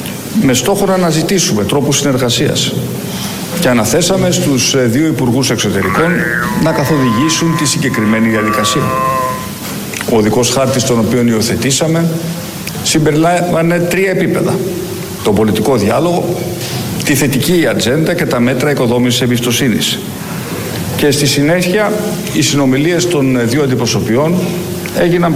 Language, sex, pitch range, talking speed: Greek, male, 125-175 Hz, 110 wpm